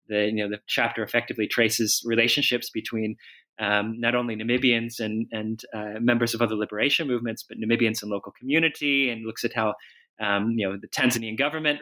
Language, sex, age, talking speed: English, male, 20-39, 185 wpm